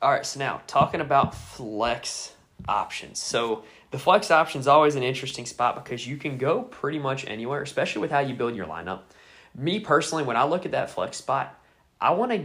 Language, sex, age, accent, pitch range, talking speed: English, male, 20-39, American, 110-140 Hz, 205 wpm